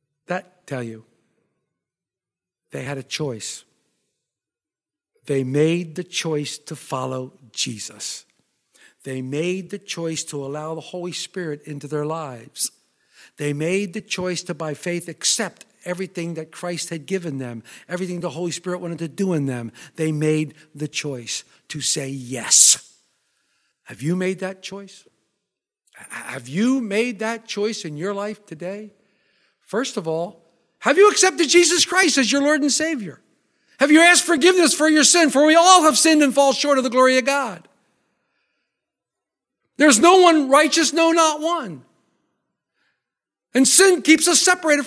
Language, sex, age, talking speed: English, male, 60-79, 150 wpm